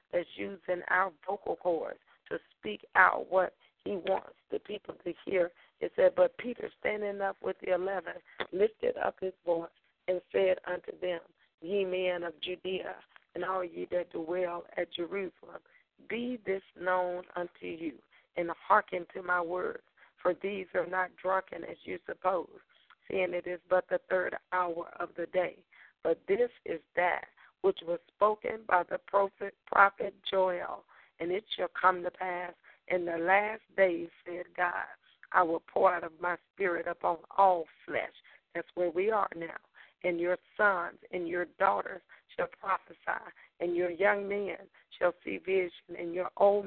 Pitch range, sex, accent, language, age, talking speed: 175-195 Hz, female, American, English, 40-59, 165 wpm